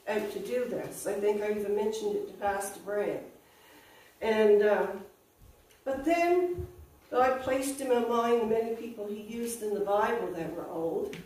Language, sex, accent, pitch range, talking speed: English, female, American, 210-290 Hz, 165 wpm